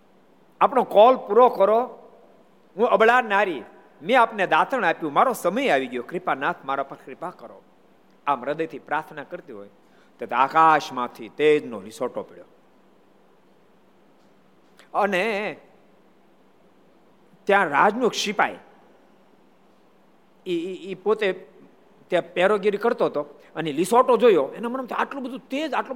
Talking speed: 110 wpm